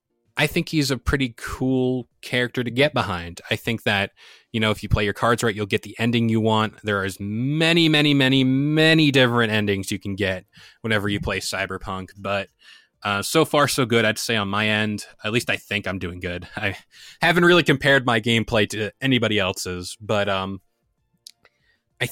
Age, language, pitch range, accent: 20-39, English, 100-125 Hz, American